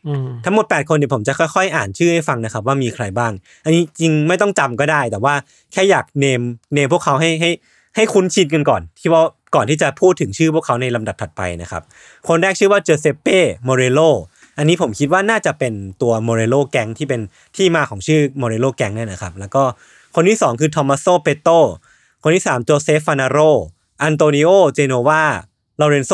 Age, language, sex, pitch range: 20-39, Thai, male, 120-160 Hz